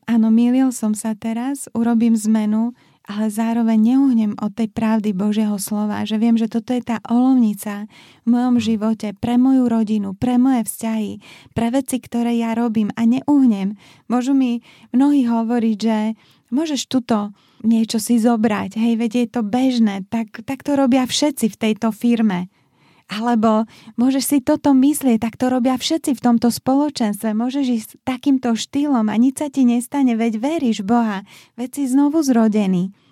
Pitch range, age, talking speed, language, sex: 220-255 Hz, 20-39, 165 wpm, Slovak, female